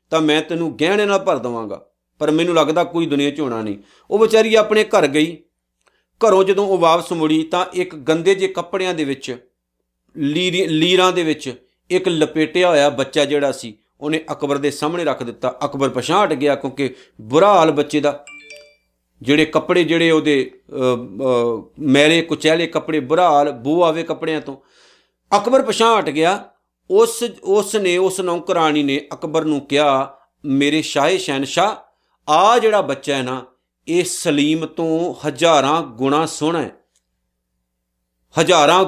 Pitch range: 145-190 Hz